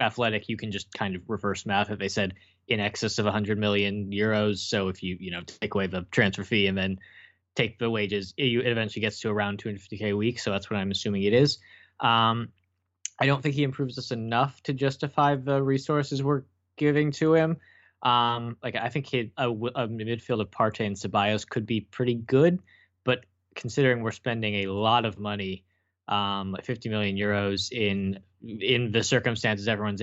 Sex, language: male, English